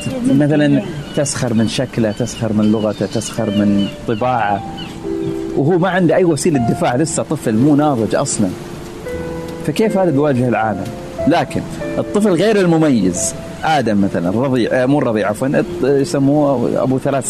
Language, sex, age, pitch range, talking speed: Arabic, male, 40-59, 110-150 Hz, 130 wpm